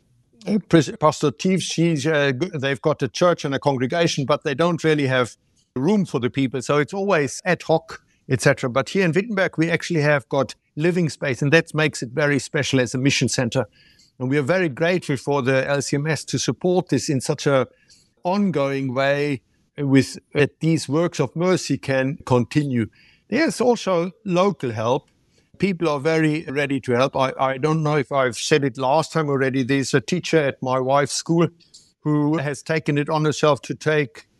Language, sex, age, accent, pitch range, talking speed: English, male, 60-79, German, 135-170 Hz, 180 wpm